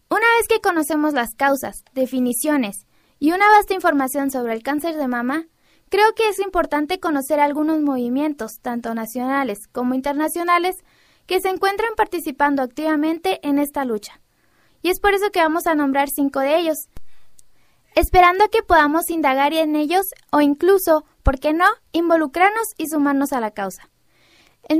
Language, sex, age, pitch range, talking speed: Spanish, female, 20-39, 275-355 Hz, 155 wpm